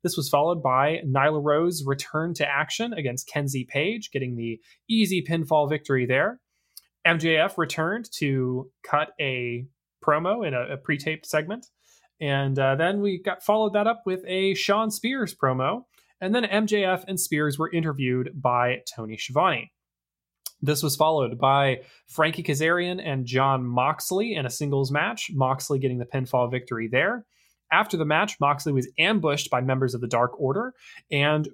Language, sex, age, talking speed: English, male, 20-39, 160 wpm